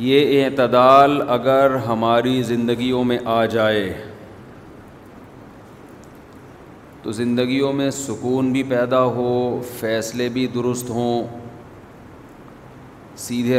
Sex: male